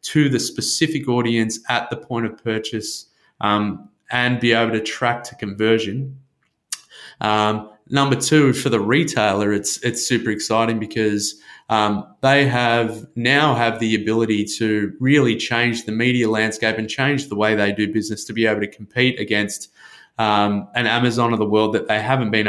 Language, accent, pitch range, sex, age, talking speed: English, Australian, 110-130 Hz, male, 20-39, 170 wpm